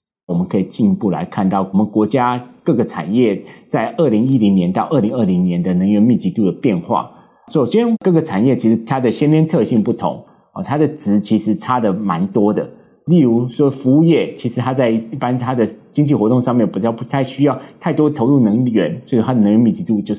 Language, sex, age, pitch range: Chinese, male, 30-49, 105-145 Hz